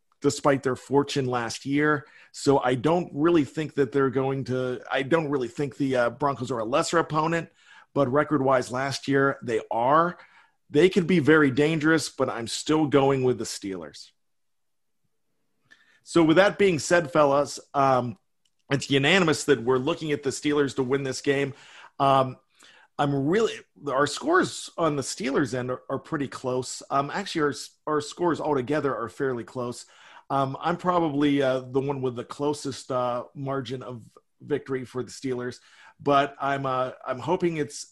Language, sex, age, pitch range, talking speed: English, male, 40-59, 130-155 Hz, 170 wpm